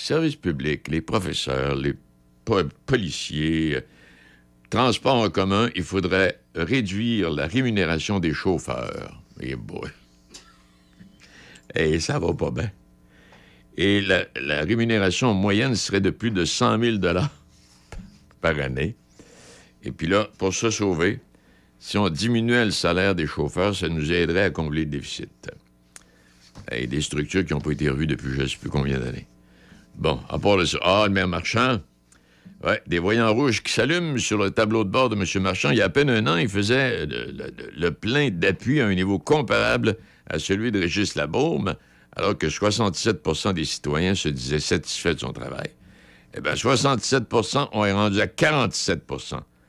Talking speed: 160 wpm